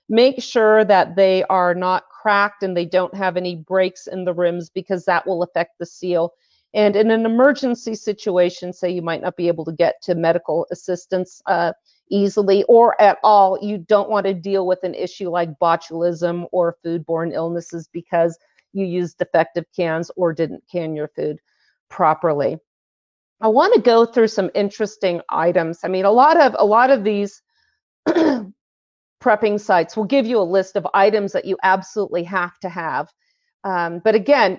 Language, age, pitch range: English, 40-59, 175-210 Hz